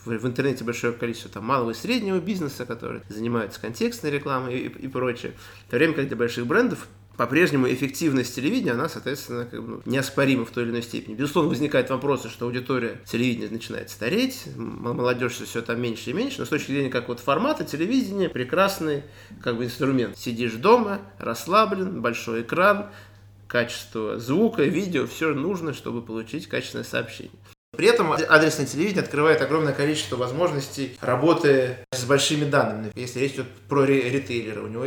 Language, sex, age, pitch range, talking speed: Russian, male, 20-39, 115-140 Hz, 155 wpm